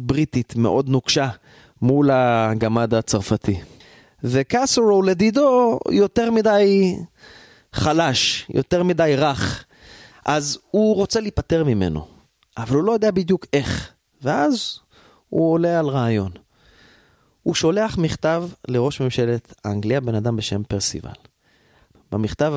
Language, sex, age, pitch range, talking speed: Hebrew, male, 30-49, 115-175 Hz, 110 wpm